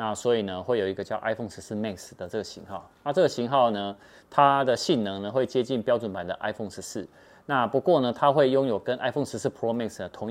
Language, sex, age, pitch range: Chinese, male, 30-49, 105-135 Hz